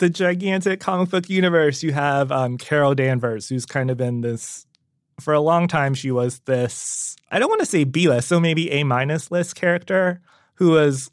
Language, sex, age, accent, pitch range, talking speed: English, male, 20-39, American, 125-155 Hz, 195 wpm